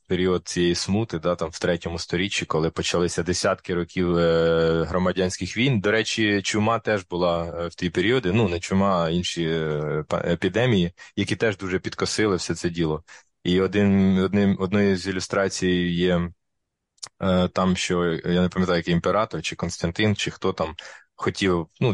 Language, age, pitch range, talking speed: Ukrainian, 20-39, 85-100 Hz, 150 wpm